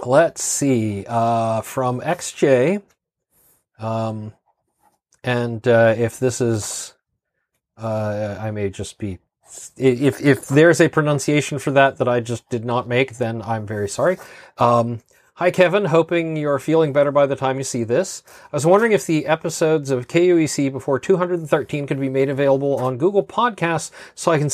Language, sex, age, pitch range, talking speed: English, male, 30-49, 115-150 Hz, 160 wpm